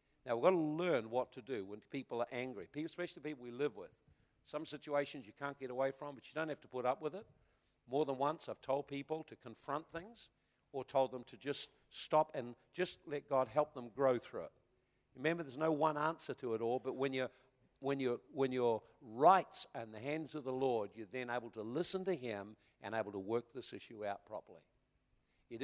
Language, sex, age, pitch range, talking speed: English, male, 50-69, 120-155 Hz, 215 wpm